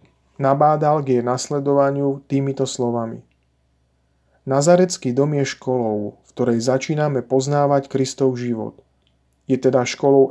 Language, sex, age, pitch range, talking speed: Slovak, male, 40-59, 115-140 Hz, 110 wpm